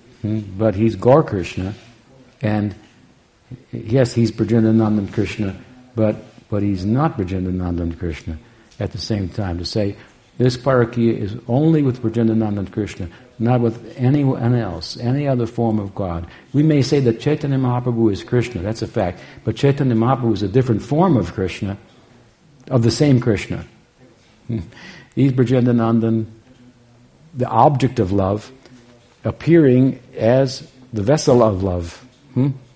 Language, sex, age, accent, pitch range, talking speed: English, male, 60-79, American, 105-125 Hz, 145 wpm